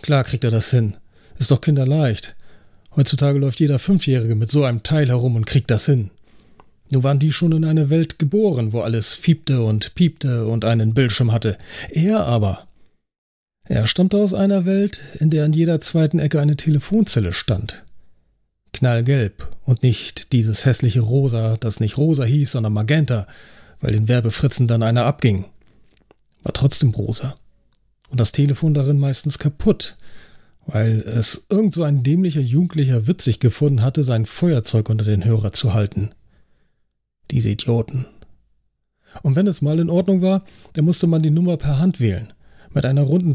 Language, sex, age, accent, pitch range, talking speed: German, male, 40-59, German, 115-155 Hz, 165 wpm